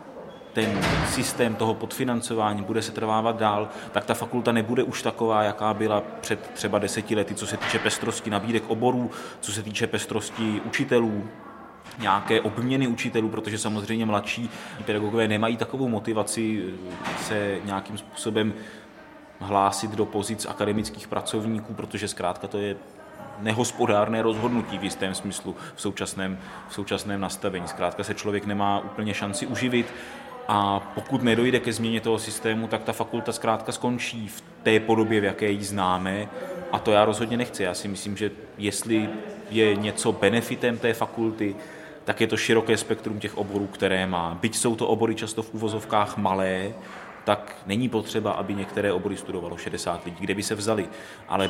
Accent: native